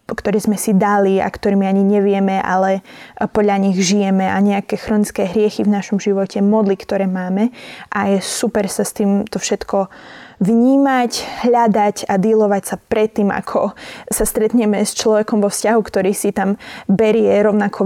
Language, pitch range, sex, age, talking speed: English, 200-225 Hz, female, 20-39, 160 wpm